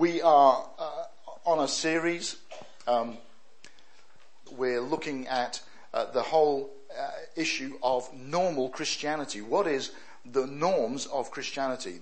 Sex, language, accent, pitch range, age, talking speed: male, English, British, 125-160 Hz, 50-69, 120 wpm